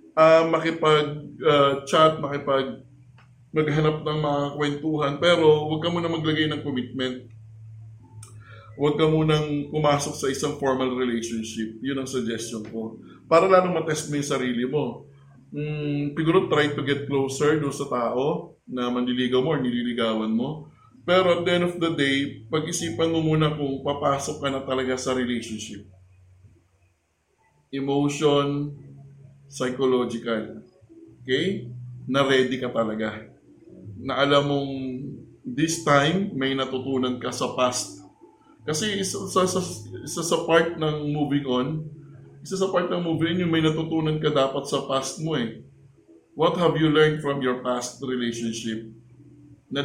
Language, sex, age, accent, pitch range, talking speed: Filipino, male, 20-39, native, 125-155 Hz, 135 wpm